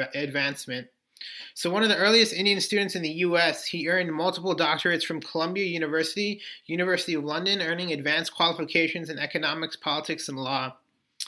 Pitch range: 155-185 Hz